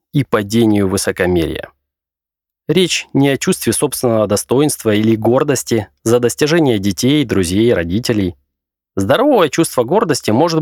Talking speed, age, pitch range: 115 wpm, 20-39, 100-140 Hz